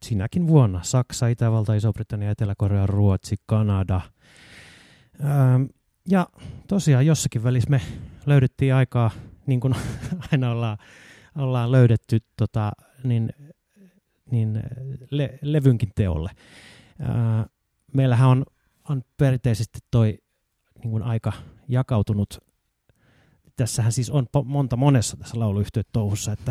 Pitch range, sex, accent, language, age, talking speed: 110-135 Hz, male, native, Finnish, 30-49, 105 wpm